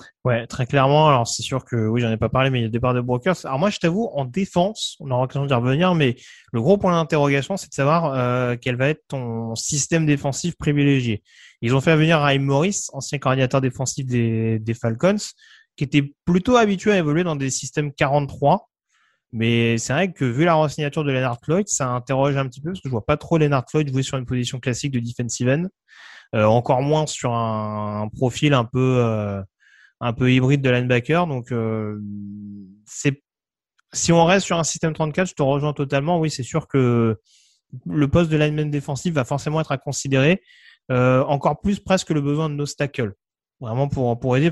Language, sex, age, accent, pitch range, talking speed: French, male, 20-39, French, 125-155 Hz, 210 wpm